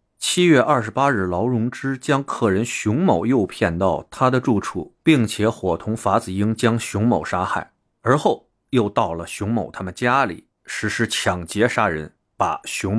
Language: Chinese